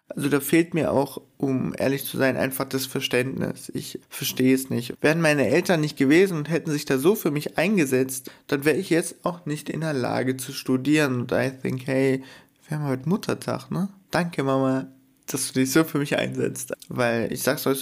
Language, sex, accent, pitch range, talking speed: German, male, German, 130-150 Hz, 210 wpm